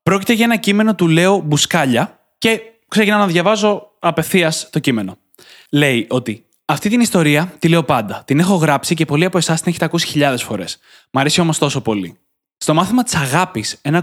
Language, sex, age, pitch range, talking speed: Greek, male, 20-39, 135-185 Hz, 190 wpm